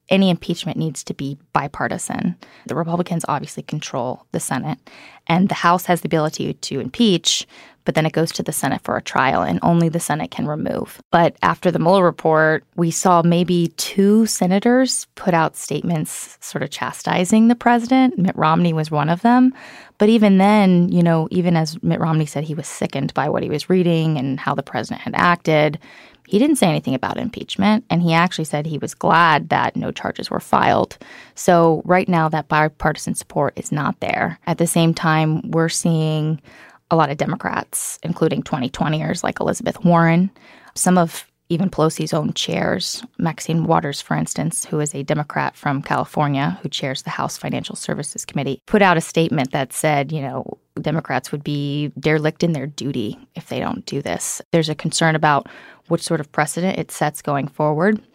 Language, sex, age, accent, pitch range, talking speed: English, female, 20-39, American, 155-185 Hz, 185 wpm